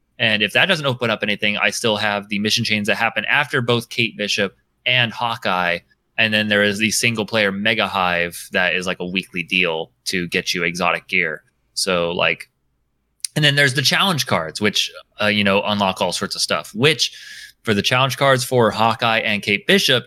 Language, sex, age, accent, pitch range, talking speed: English, male, 30-49, American, 100-125 Hz, 205 wpm